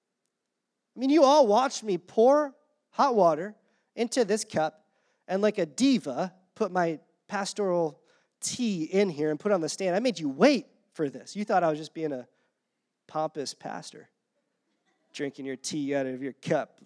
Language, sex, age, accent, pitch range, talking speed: English, male, 30-49, American, 165-240 Hz, 180 wpm